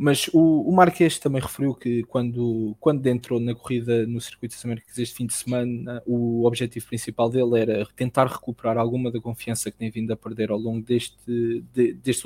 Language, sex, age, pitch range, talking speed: English, male, 20-39, 120-140 Hz, 185 wpm